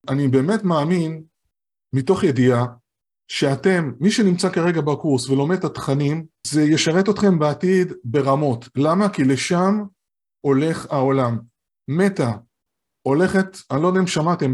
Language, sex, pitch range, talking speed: Hebrew, male, 135-185 Hz, 125 wpm